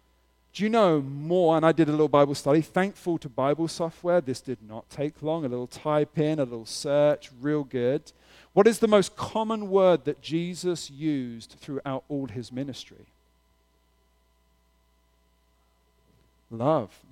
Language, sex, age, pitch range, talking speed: English, male, 40-59, 115-170 Hz, 150 wpm